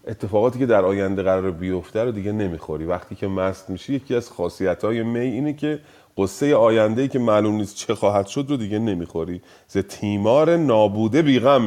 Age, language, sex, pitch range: 30-49, Persian, male, 95-135 Hz